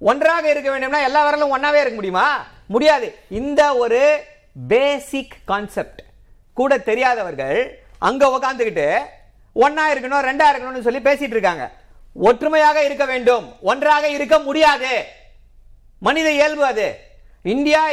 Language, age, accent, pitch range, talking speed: Tamil, 50-69, native, 230-290 Hz, 35 wpm